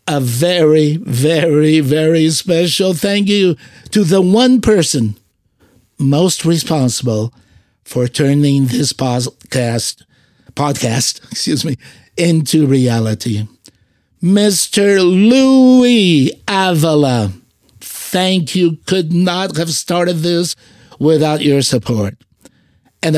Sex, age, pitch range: male, 60-79, 125-175 Hz